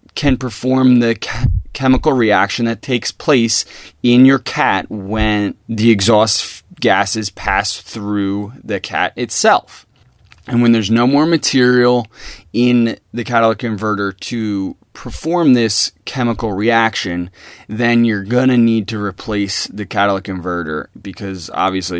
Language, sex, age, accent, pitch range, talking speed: English, male, 20-39, American, 100-120 Hz, 130 wpm